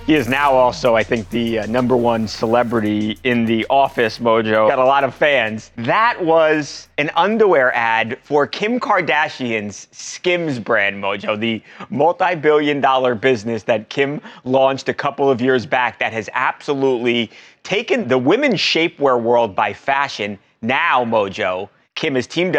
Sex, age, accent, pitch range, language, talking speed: male, 30-49, American, 120-150 Hz, English, 155 wpm